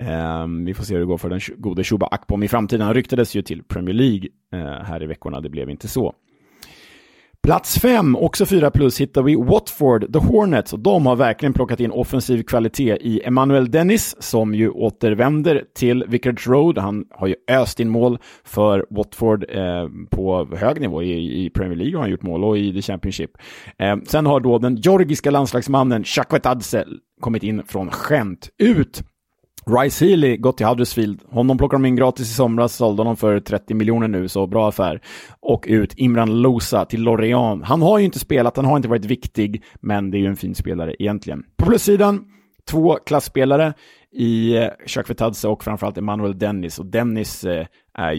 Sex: male